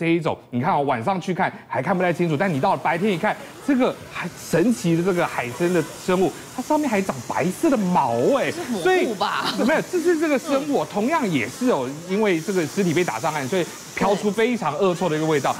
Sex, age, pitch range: male, 30-49, 170-270 Hz